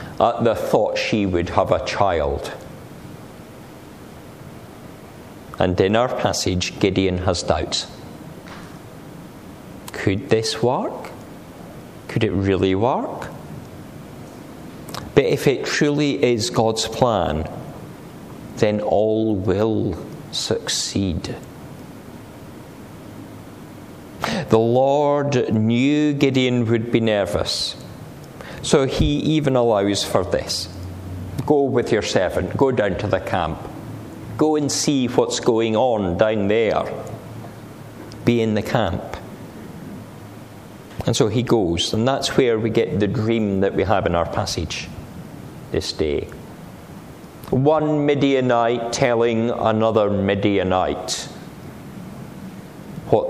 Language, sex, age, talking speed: English, male, 50-69, 105 wpm